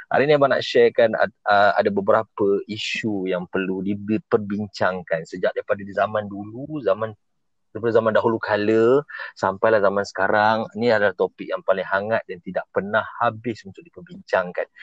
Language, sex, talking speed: Malay, male, 140 wpm